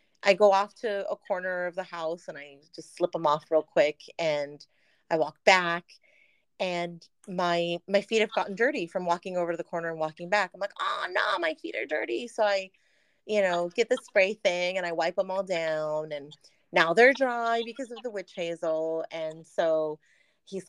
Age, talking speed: 30-49, 205 wpm